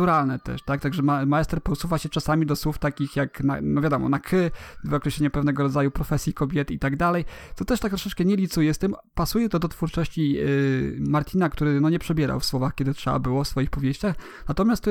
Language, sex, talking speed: Polish, male, 215 wpm